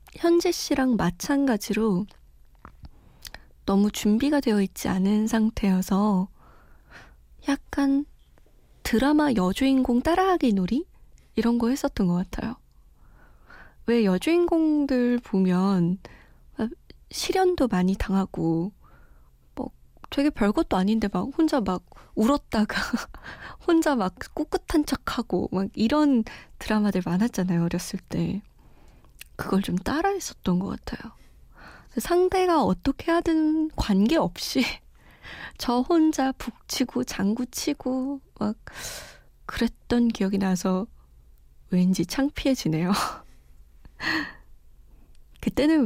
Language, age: Korean, 20-39